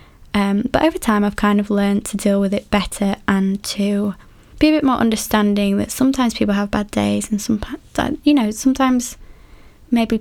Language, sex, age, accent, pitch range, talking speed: English, female, 20-39, British, 200-225 Hz, 190 wpm